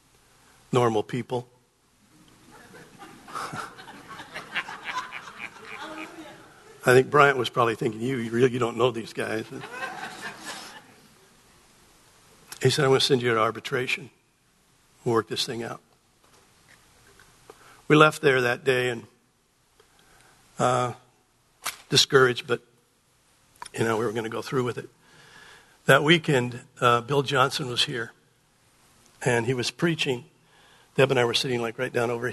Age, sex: 60-79, male